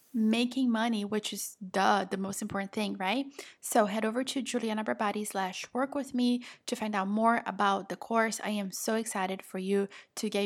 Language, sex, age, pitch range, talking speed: English, female, 20-39, 205-245 Hz, 200 wpm